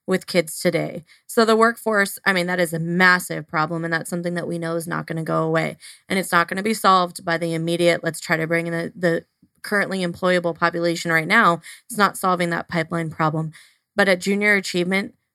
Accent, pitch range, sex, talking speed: American, 170-205 Hz, female, 225 wpm